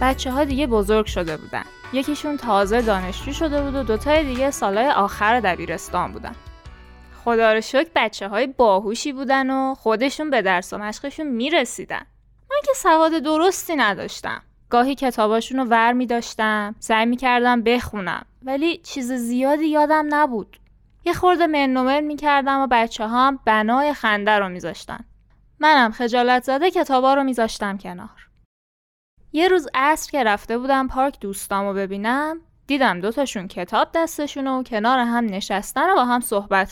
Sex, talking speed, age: female, 140 wpm, 10-29